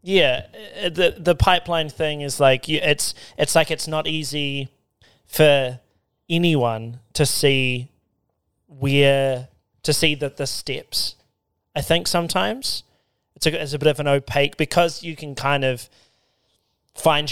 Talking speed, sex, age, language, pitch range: 135 wpm, male, 20-39, English, 125-155 Hz